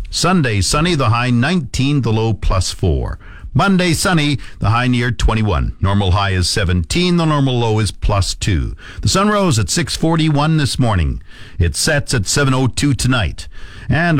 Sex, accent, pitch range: male, American, 105-150 Hz